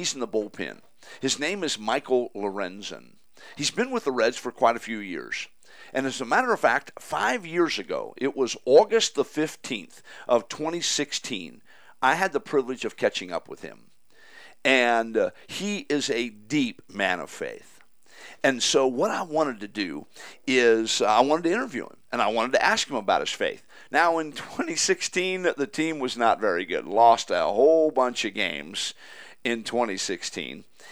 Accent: American